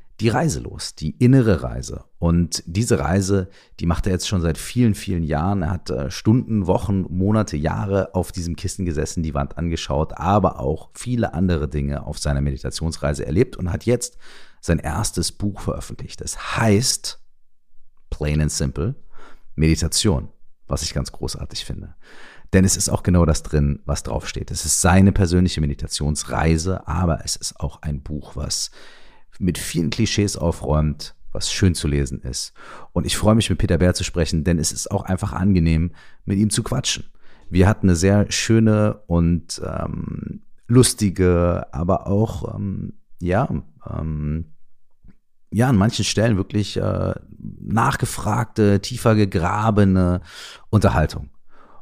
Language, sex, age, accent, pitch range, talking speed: German, male, 40-59, German, 80-105 Hz, 150 wpm